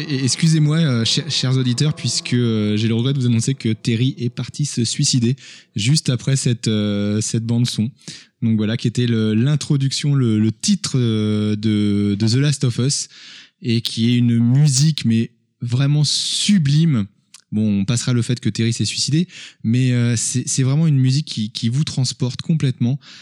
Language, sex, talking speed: French, male, 170 wpm